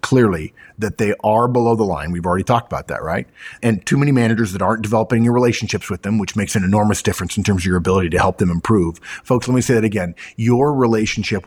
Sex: male